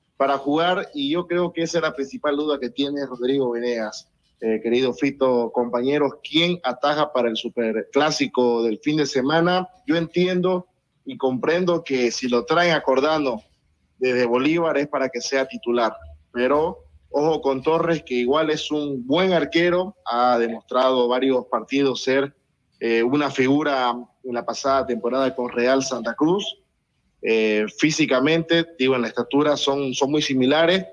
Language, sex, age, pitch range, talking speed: Spanish, male, 30-49, 120-155 Hz, 155 wpm